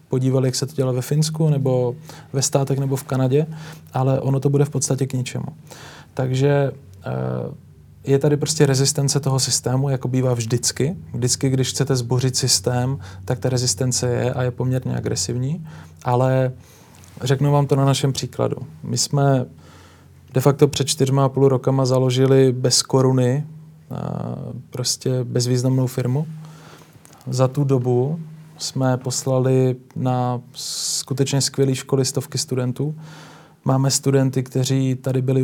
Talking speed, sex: 140 wpm, male